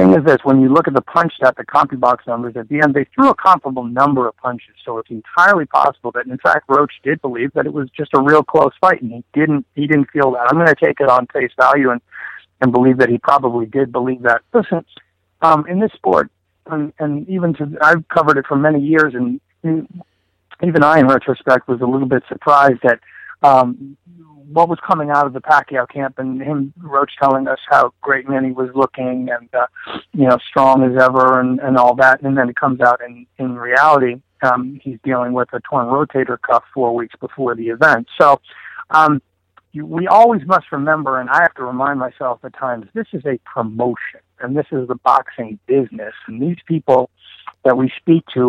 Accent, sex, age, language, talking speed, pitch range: American, male, 50-69, English, 220 wpm, 125-150 Hz